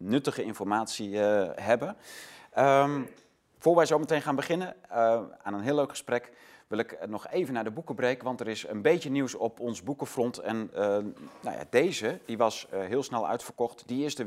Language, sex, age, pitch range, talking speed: Dutch, male, 30-49, 90-125 Hz, 200 wpm